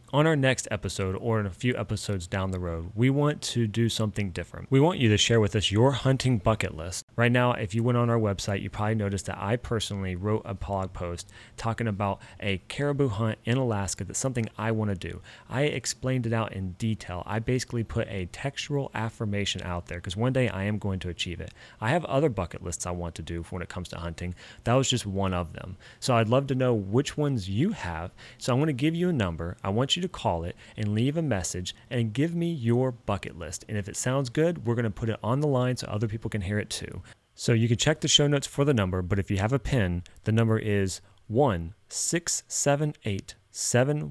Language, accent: English, American